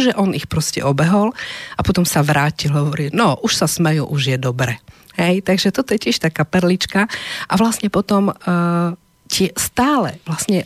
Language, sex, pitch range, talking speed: Slovak, female, 155-205 Hz, 180 wpm